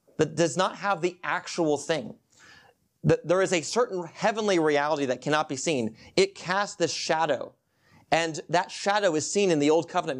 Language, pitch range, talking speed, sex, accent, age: English, 155-190 Hz, 175 wpm, male, American, 30-49